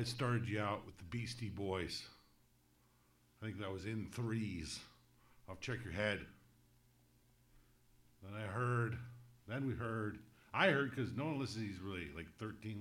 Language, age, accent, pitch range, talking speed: English, 50-69, American, 90-125 Hz, 155 wpm